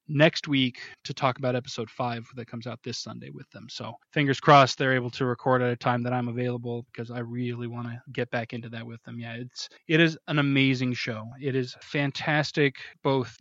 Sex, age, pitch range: male, 20-39, 120-145 Hz